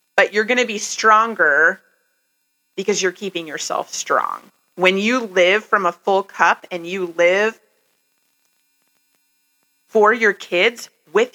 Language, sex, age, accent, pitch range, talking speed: English, female, 30-49, American, 170-265 Hz, 130 wpm